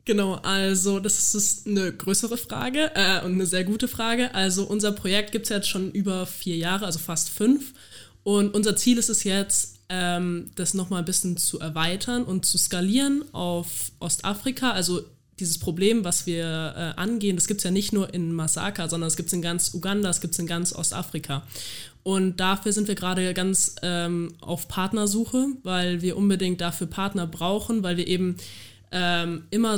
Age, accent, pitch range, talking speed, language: 20-39, German, 175-205 Hz, 180 wpm, German